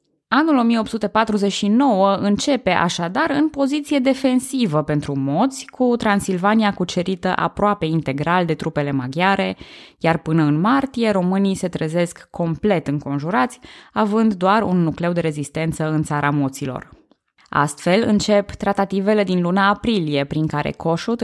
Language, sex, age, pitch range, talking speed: Romanian, female, 20-39, 160-240 Hz, 125 wpm